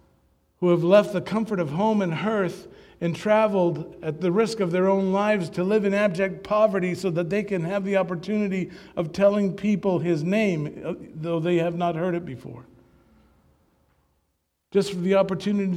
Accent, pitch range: American, 135-195 Hz